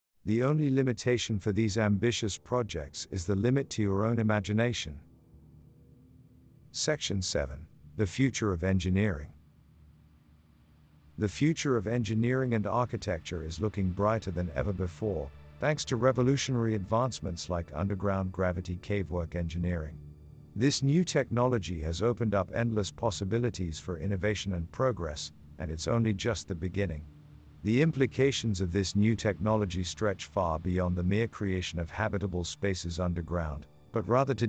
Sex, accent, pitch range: male, American, 90-120 Hz